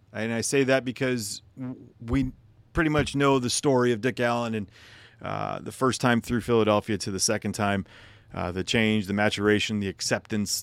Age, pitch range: 40-59, 105-130 Hz